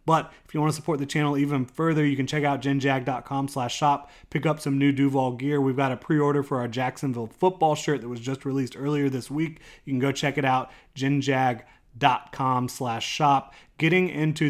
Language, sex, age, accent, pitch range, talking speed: English, male, 30-49, American, 125-145 Hz, 200 wpm